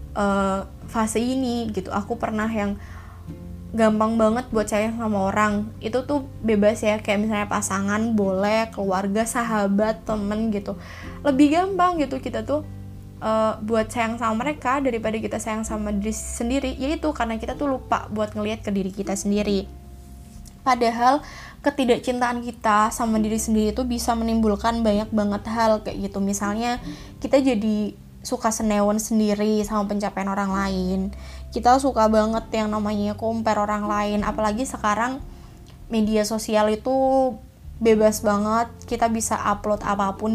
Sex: female